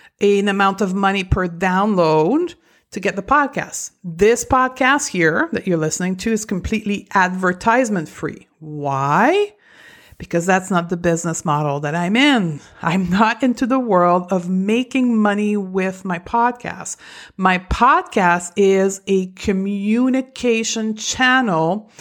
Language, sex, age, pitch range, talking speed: English, female, 50-69, 185-240 Hz, 130 wpm